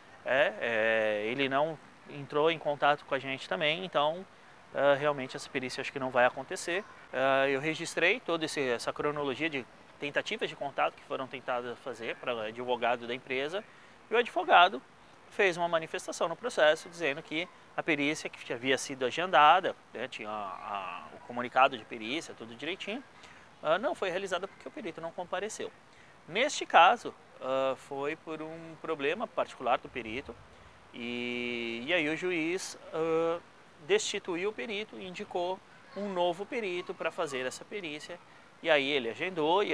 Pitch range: 135-180 Hz